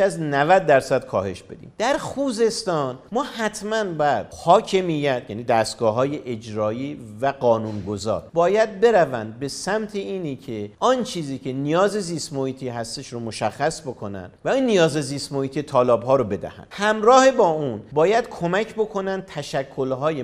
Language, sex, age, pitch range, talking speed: Persian, male, 50-69, 125-175 Hz, 140 wpm